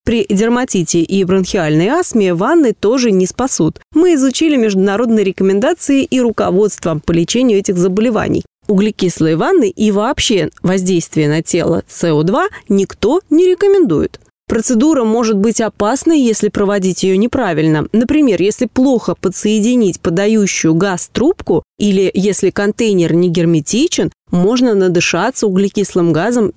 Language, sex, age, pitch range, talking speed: Russian, female, 20-39, 175-240 Hz, 120 wpm